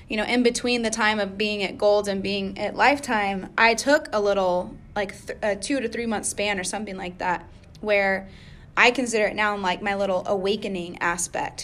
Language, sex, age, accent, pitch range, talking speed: English, female, 20-39, American, 200-230 Hz, 200 wpm